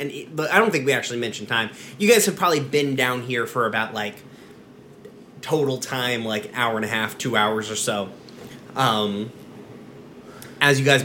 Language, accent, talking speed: English, American, 180 wpm